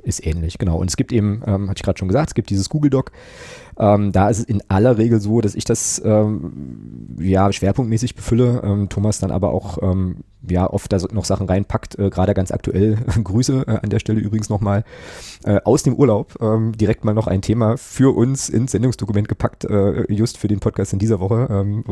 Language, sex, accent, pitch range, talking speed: German, male, German, 95-110 Hz, 220 wpm